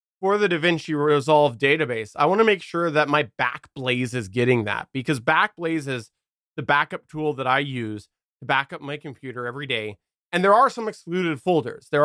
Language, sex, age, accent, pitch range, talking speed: English, male, 20-39, American, 120-160 Hz, 190 wpm